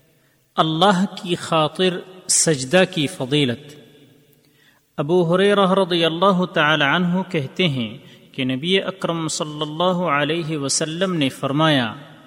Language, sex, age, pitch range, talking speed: Urdu, male, 40-59, 140-180 Hz, 110 wpm